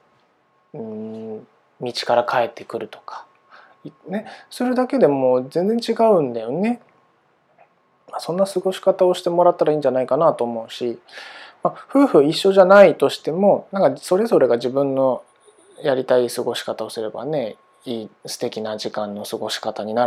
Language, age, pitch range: Japanese, 20-39, 115-175 Hz